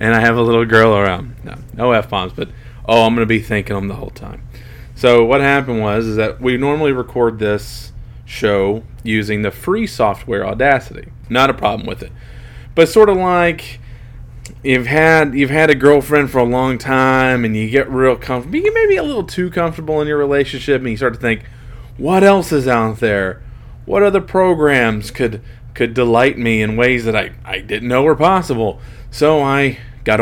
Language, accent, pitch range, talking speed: English, American, 115-135 Hz, 200 wpm